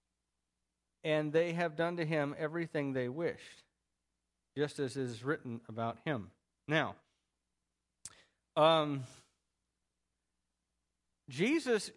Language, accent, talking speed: English, American, 95 wpm